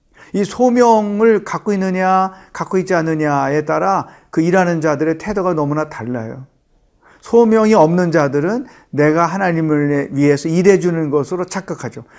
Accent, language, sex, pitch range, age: native, Korean, male, 155-205 Hz, 40-59